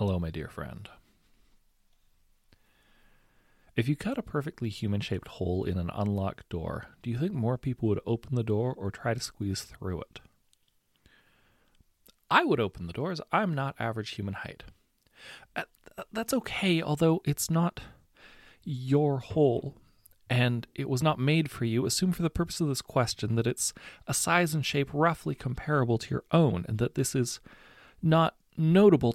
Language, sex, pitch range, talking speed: English, male, 110-165 Hz, 160 wpm